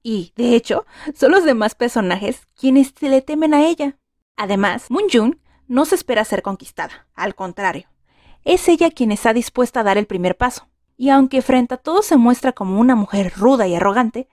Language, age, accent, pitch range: Spanish, 30-49, Mexican, 210-275 Hz